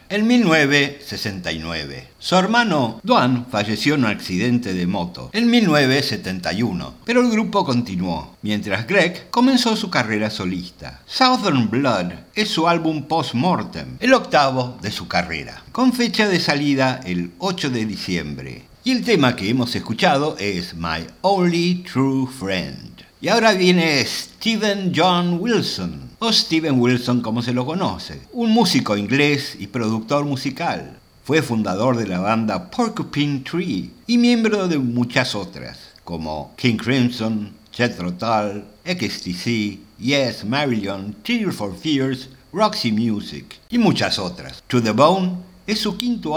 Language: Spanish